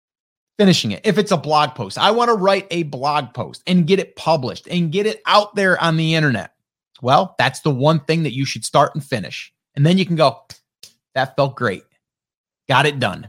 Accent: American